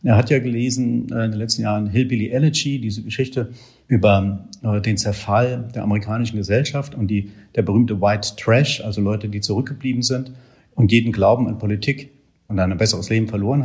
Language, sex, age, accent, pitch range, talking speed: German, male, 50-69, German, 105-130 Hz, 170 wpm